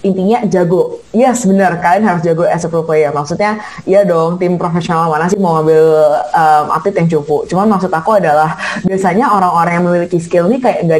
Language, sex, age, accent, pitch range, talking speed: Indonesian, female, 20-39, native, 160-185 Hz, 200 wpm